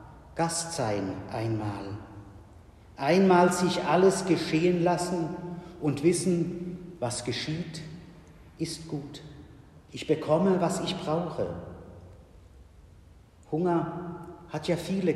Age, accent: 50-69, German